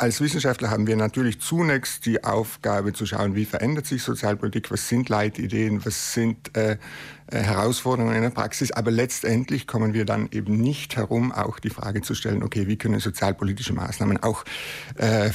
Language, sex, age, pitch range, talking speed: German, male, 50-69, 105-125 Hz, 170 wpm